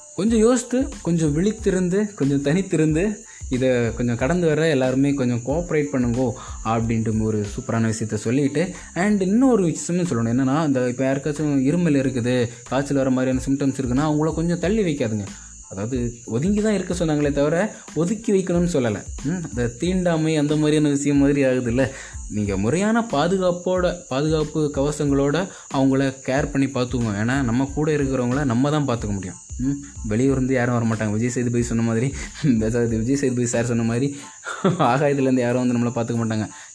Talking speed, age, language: 155 wpm, 20-39, Tamil